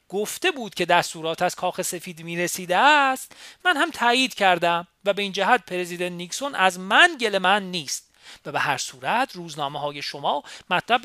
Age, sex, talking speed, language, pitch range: 40-59, male, 180 wpm, Persian, 155-215 Hz